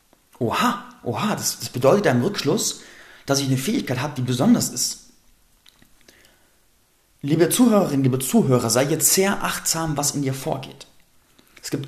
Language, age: German, 30-49